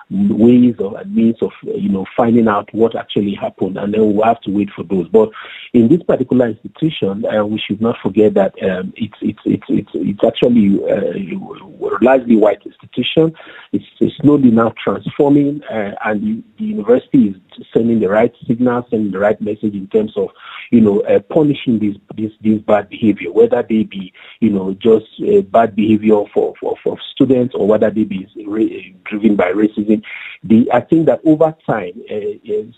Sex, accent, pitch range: male, Nigerian, 105-160 Hz